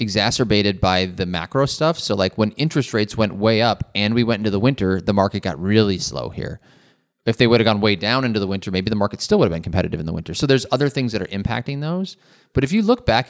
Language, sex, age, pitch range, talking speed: English, male, 30-49, 95-115 Hz, 265 wpm